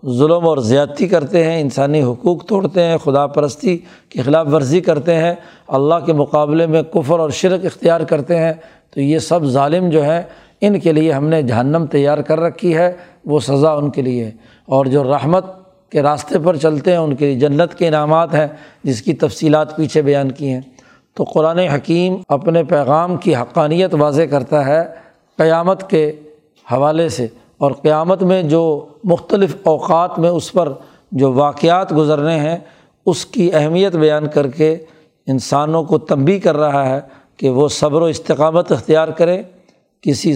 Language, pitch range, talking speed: Urdu, 145-170 Hz, 170 wpm